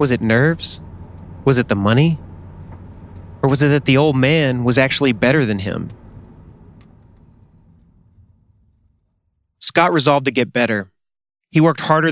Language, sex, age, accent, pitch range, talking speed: English, male, 30-49, American, 110-140 Hz, 135 wpm